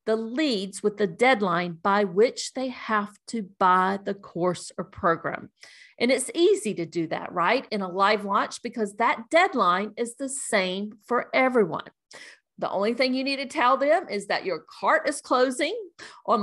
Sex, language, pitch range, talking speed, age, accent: female, English, 195-280 Hz, 180 wpm, 50-69, American